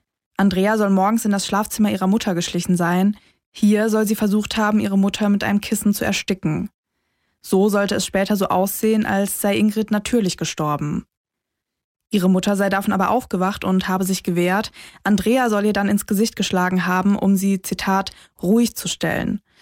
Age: 20-39